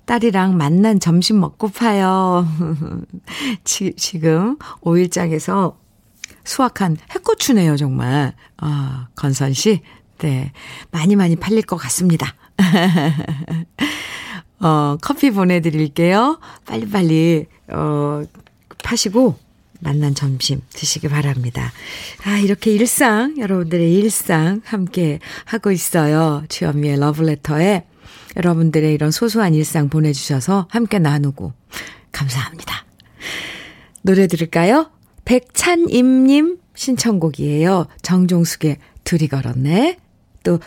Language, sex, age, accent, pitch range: Korean, female, 50-69, native, 150-210 Hz